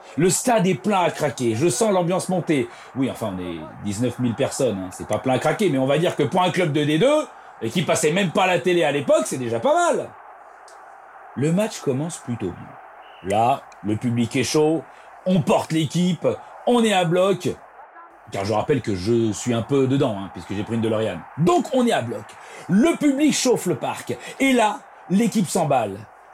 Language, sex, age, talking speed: French, male, 40-59, 210 wpm